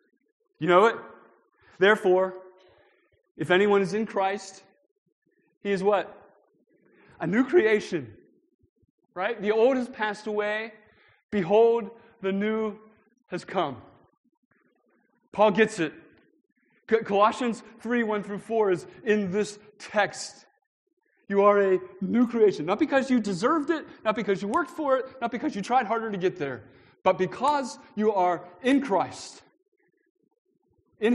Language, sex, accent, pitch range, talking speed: English, male, American, 170-240 Hz, 130 wpm